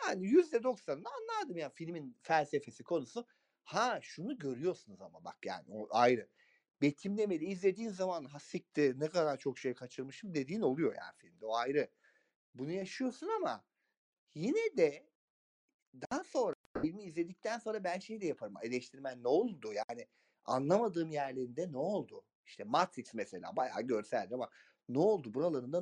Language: Turkish